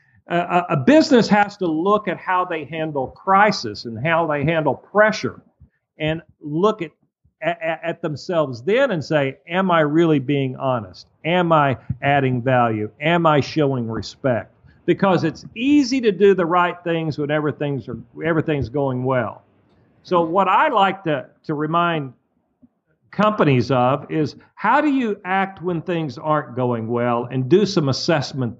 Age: 50-69